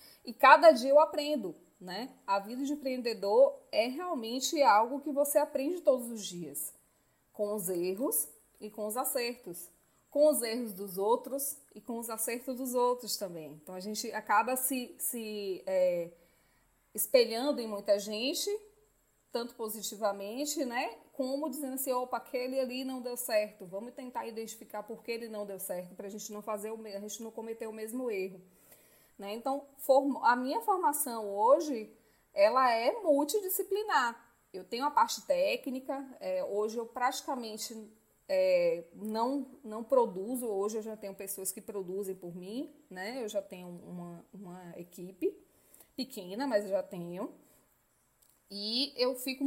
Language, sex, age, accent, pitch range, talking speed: Portuguese, female, 20-39, Brazilian, 210-275 Hz, 150 wpm